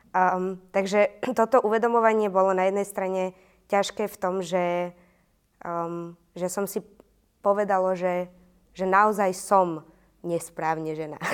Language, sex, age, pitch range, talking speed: Slovak, female, 20-39, 160-190 Hz, 120 wpm